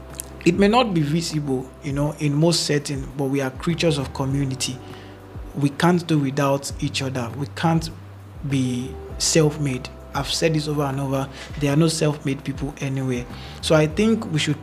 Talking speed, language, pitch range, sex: 175 wpm, English, 130-155 Hz, male